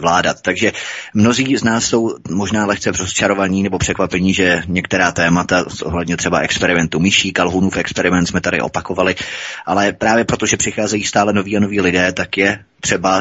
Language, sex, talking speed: Czech, male, 170 wpm